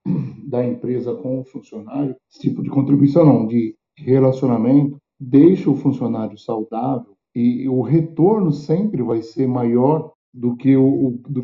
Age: 50-69